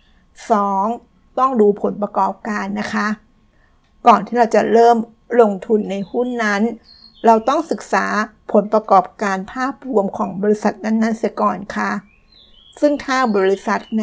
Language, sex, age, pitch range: Thai, female, 60-79, 200-240 Hz